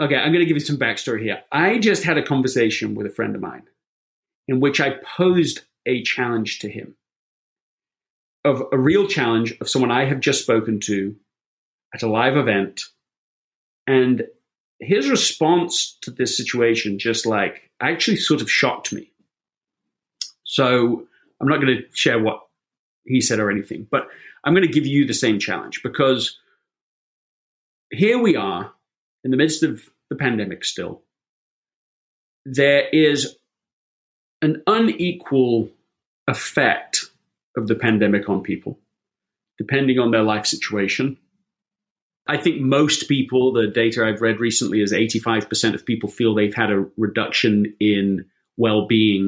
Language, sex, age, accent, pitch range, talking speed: English, male, 30-49, British, 110-145 Hz, 145 wpm